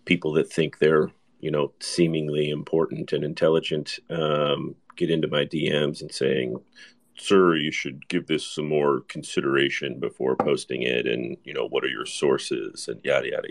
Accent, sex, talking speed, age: American, male, 170 wpm, 40-59